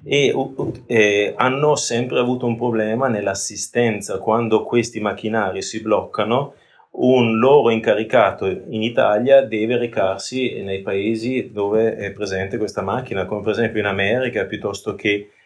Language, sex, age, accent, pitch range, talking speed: Italian, male, 30-49, native, 95-120 Hz, 130 wpm